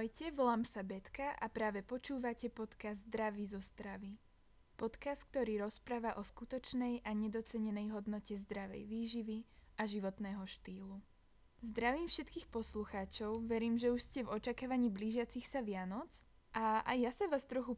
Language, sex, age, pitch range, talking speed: Slovak, female, 20-39, 210-245 Hz, 140 wpm